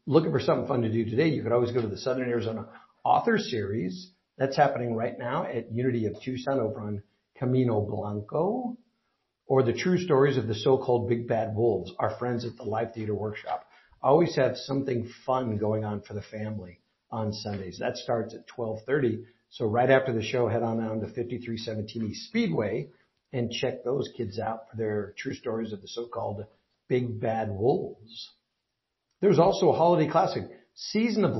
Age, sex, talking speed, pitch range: 50-69, male, 185 wpm, 115-155 Hz